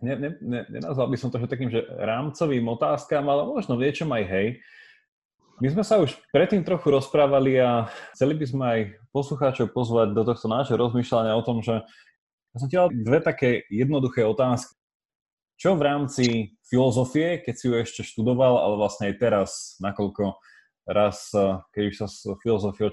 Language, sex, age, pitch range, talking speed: Slovak, male, 20-39, 105-145 Hz, 175 wpm